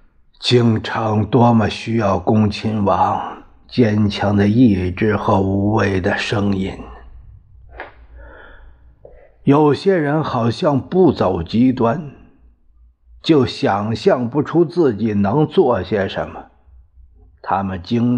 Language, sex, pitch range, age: Chinese, male, 95-130 Hz, 50-69